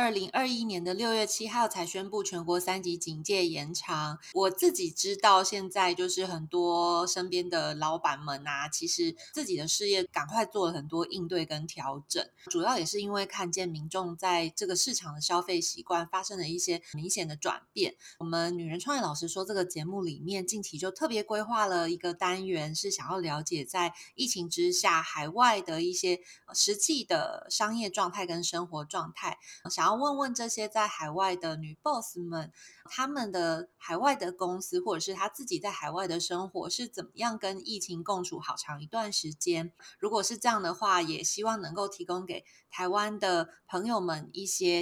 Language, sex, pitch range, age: Chinese, female, 170-210 Hz, 20-39